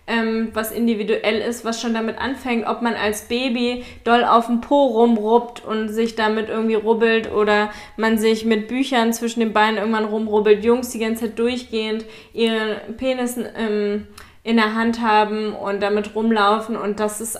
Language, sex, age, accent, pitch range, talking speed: German, female, 20-39, German, 210-235 Hz, 165 wpm